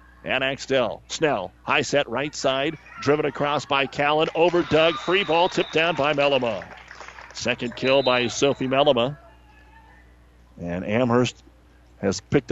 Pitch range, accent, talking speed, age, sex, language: 120-150 Hz, American, 135 wpm, 40-59, male, English